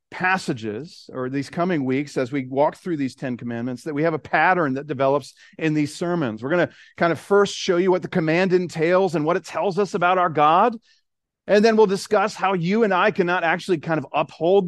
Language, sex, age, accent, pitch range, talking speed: English, male, 40-59, American, 130-175 Hz, 225 wpm